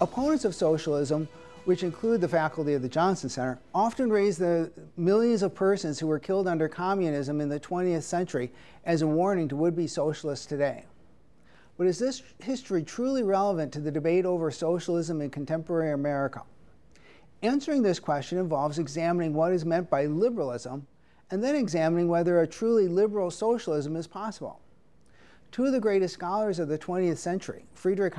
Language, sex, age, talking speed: English, male, 40-59, 165 wpm